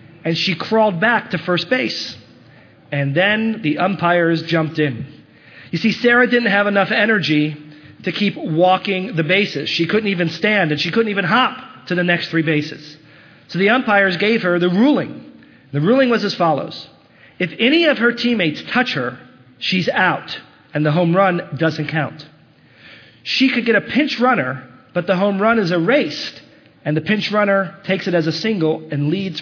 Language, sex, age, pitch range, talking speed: English, male, 40-59, 150-200 Hz, 180 wpm